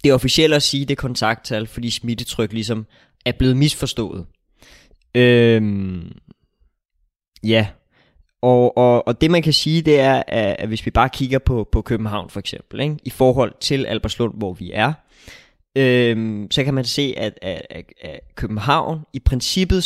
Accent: native